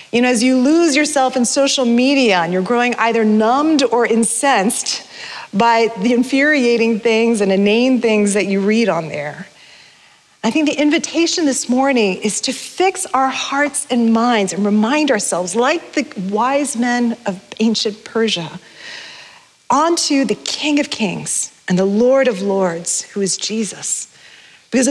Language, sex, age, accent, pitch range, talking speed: English, female, 40-59, American, 210-275 Hz, 155 wpm